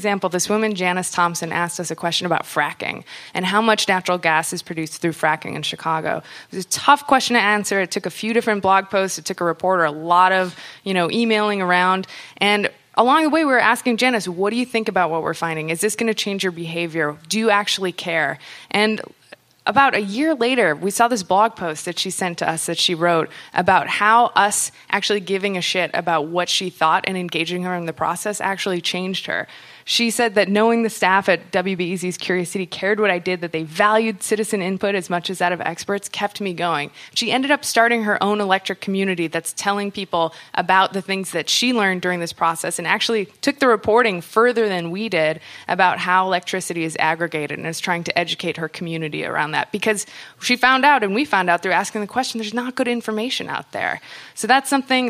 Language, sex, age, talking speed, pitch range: English, female, 20-39, 220 wpm, 175-215 Hz